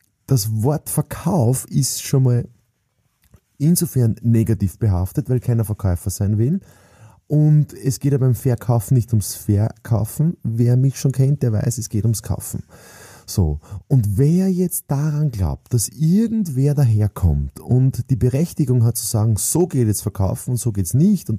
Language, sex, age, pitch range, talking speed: German, male, 30-49, 110-145 Hz, 165 wpm